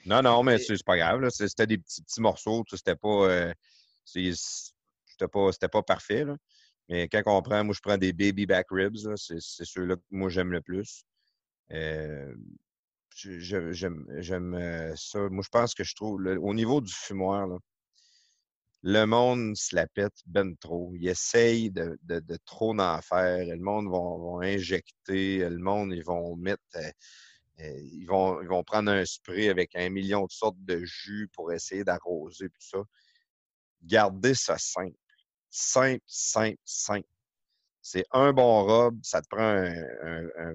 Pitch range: 90-105 Hz